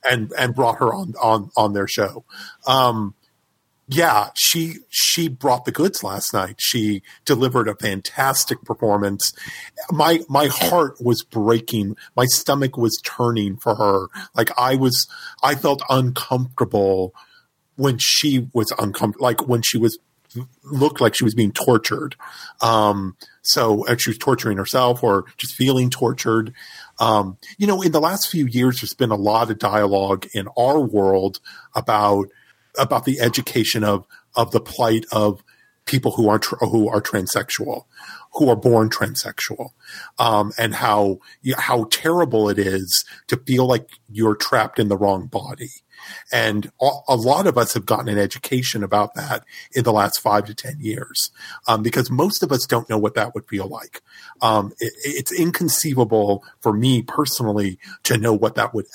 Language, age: English, 40-59